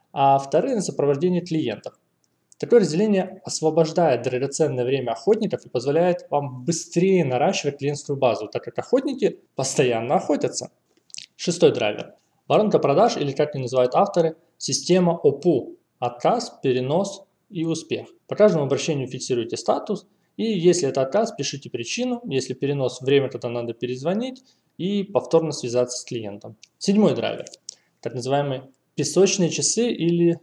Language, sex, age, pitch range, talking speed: Russian, male, 20-39, 135-180 Hz, 130 wpm